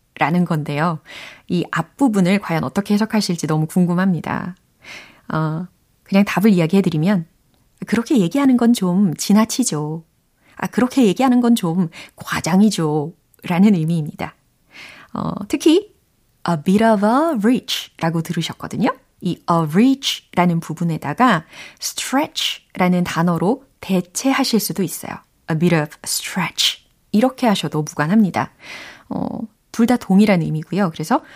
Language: Korean